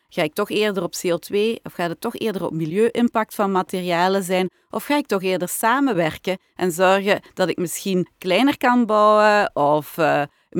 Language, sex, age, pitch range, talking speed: Dutch, female, 40-59, 165-210 Hz, 180 wpm